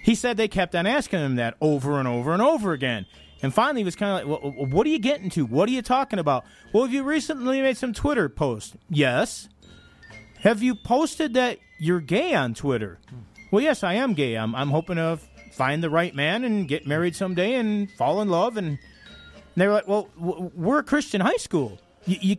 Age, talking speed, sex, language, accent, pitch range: 40-59, 215 wpm, male, English, American, 160-240 Hz